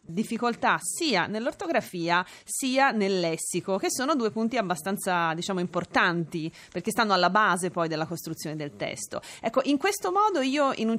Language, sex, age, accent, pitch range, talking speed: Italian, female, 30-49, native, 175-215 Hz, 160 wpm